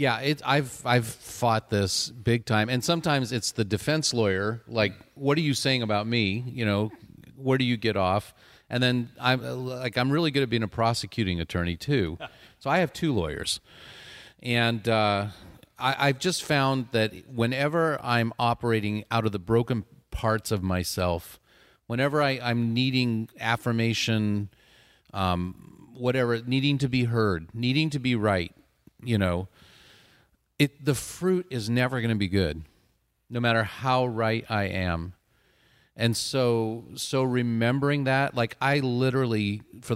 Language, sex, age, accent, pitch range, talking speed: English, male, 40-59, American, 100-125 Hz, 155 wpm